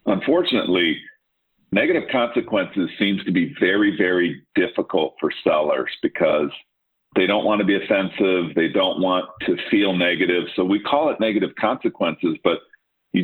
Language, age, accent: English, 50-69, American